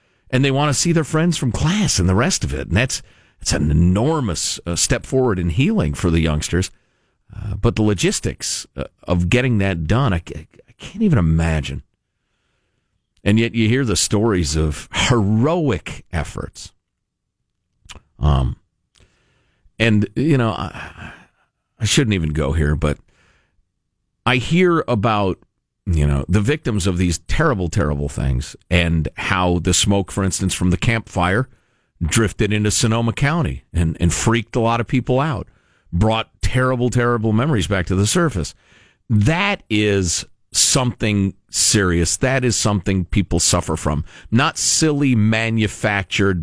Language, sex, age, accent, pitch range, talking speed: English, male, 50-69, American, 85-120 Hz, 150 wpm